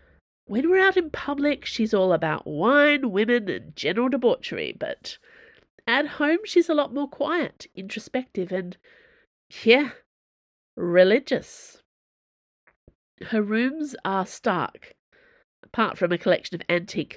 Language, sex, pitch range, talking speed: English, female, 180-285 Hz, 120 wpm